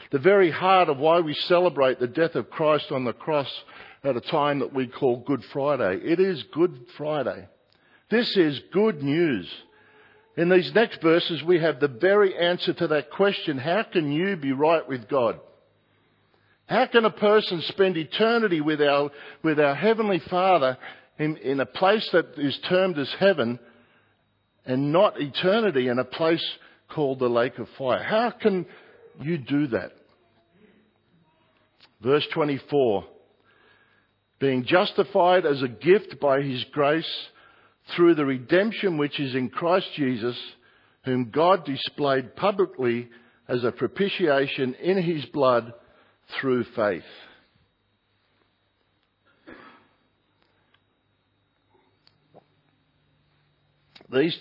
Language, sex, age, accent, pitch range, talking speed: English, male, 50-69, Australian, 130-180 Hz, 130 wpm